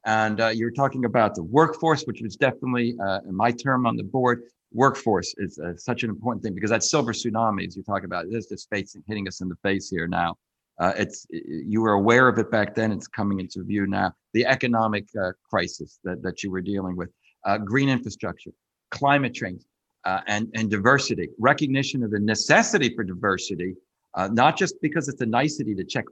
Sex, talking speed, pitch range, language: male, 210 wpm, 110-150 Hz, English